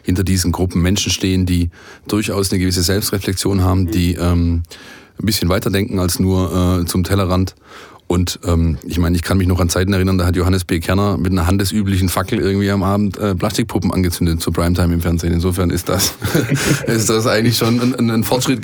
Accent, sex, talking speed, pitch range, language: German, male, 200 wpm, 90-110 Hz, German